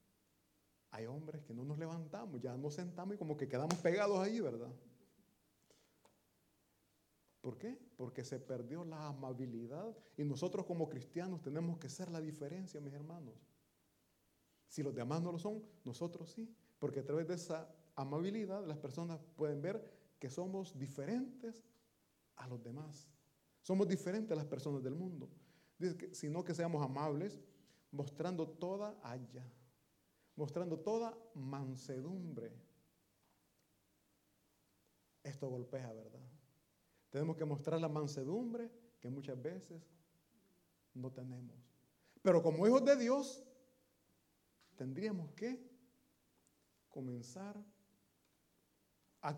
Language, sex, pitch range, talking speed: Italian, male, 135-185 Hz, 120 wpm